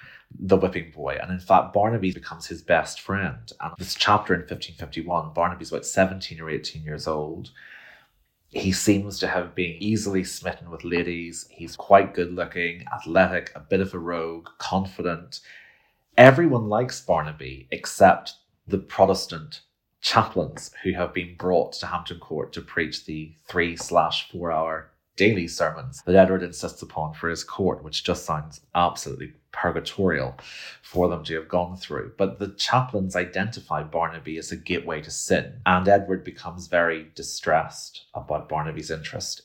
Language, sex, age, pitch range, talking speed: English, male, 30-49, 80-95 Hz, 150 wpm